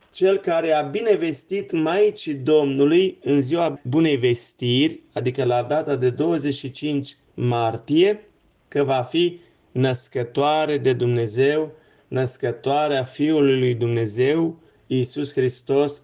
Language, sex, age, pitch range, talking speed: English, male, 30-49, 130-170 Hz, 105 wpm